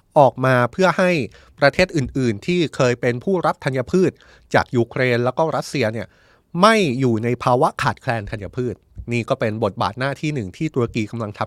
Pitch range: 115-165 Hz